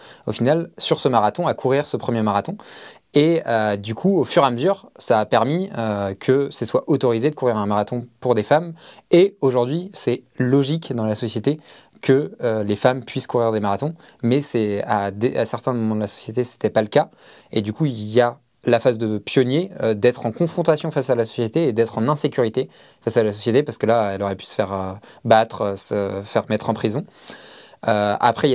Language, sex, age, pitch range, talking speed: French, male, 20-39, 105-130 Hz, 225 wpm